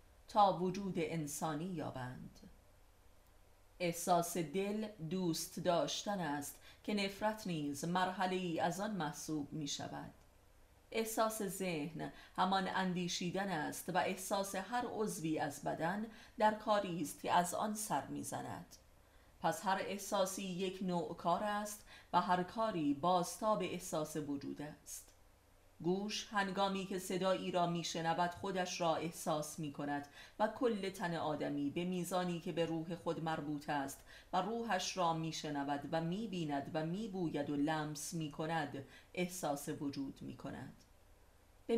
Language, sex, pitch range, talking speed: Persian, female, 150-190 Hz, 130 wpm